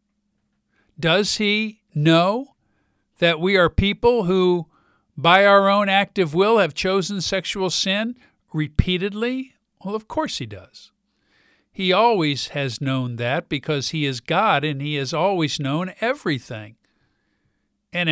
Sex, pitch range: male, 155-220 Hz